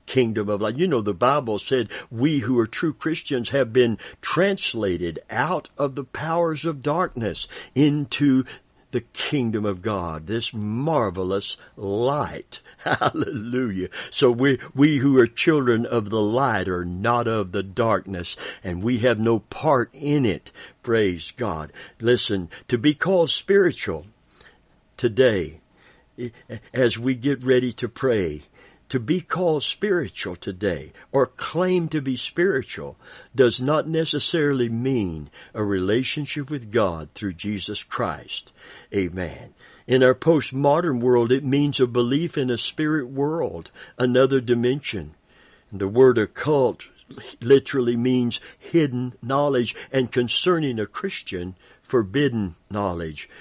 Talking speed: 130 wpm